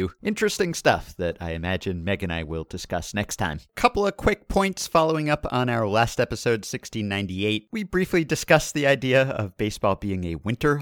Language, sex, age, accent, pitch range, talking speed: English, male, 50-69, American, 95-135 Hz, 185 wpm